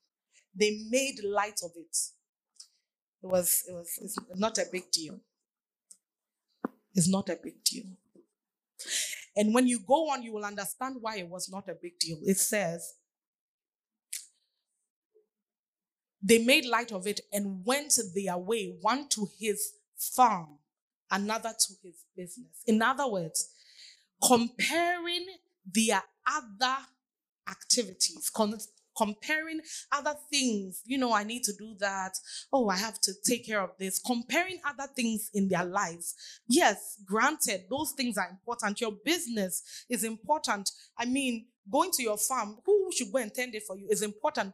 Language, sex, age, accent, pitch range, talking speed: English, female, 20-39, Nigerian, 200-275 Hz, 145 wpm